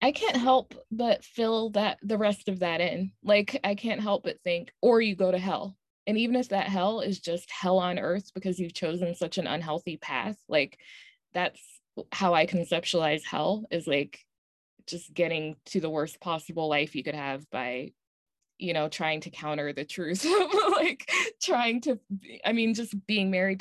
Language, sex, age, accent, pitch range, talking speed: English, female, 20-39, American, 155-220 Hz, 185 wpm